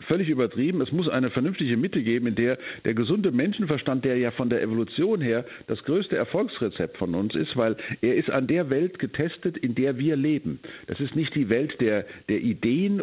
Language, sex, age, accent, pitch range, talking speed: German, male, 50-69, German, 115-155 Hz, 205 wpm